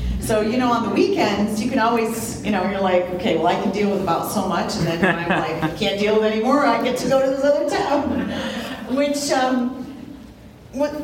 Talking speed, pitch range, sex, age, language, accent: 235 wpm, 155-220 Hz, female, 40-59, English, American